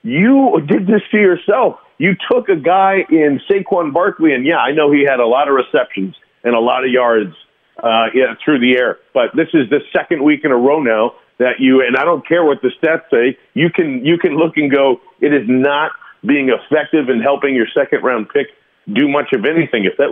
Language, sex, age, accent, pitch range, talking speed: English, male, 40-59, American, 120-160 Hz, 220 wpm